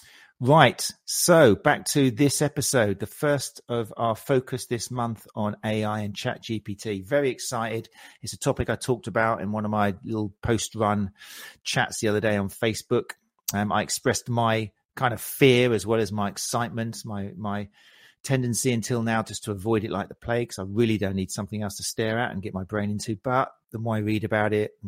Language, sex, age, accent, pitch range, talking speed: English, male, 40-59, British, 100-120 Hz, 205 wpm